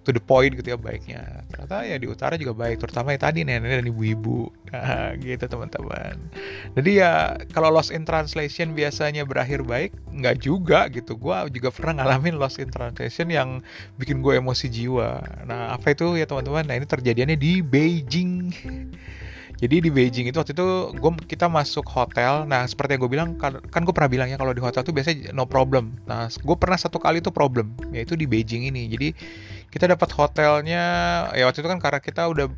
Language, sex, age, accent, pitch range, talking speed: Indonesian, male, 30-49, native, 120-155 Hz, 190 wpm